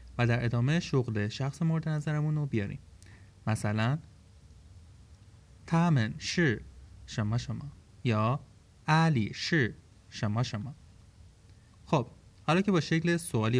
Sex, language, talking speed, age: male, Persian, 110 wpm, 30-49